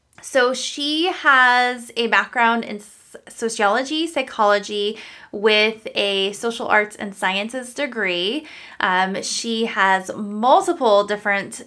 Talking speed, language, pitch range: 105 wpm, English, 205-245 Hz